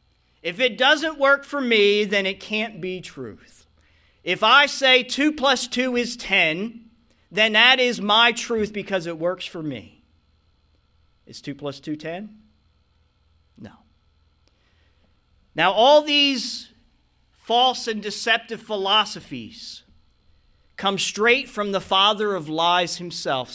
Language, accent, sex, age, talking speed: English, American, male, 40-59, 125 wpm